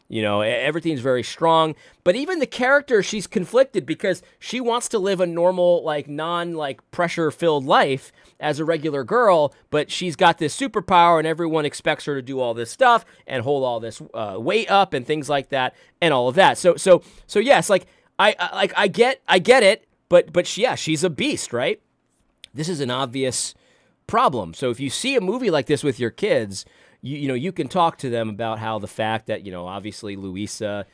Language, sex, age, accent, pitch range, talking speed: English, male, 30-49, American, 125-185 Hz, 215 wpm